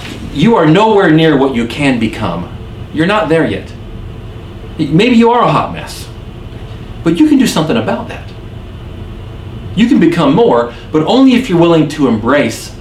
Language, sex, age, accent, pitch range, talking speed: English, male, 40-59, American, 110-150 Hz, 170 wpm